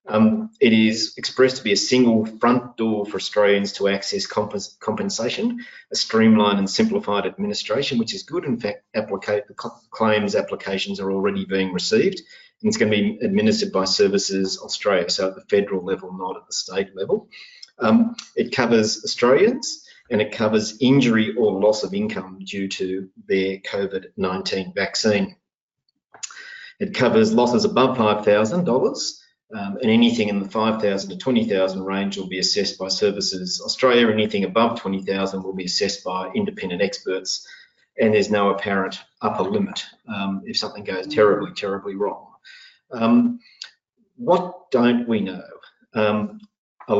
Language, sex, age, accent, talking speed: English, male, 30-49, Australian, 155 wpm